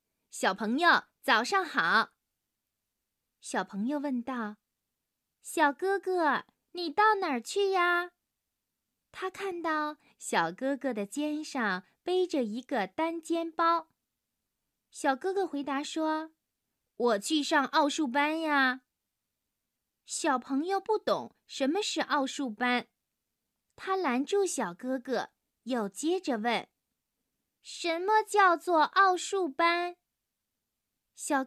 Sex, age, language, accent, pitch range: female, 20-39, Chinese, native, 255-355 Hz